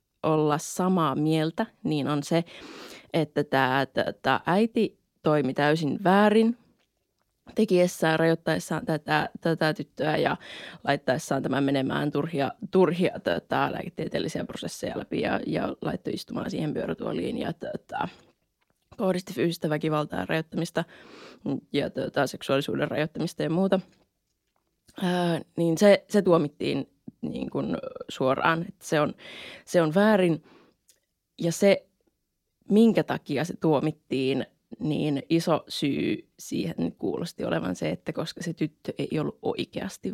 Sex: female